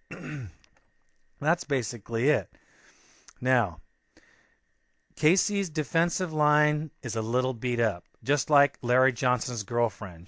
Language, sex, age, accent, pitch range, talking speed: English, male, 40-59, American, 110-150 Hz, 100 wpm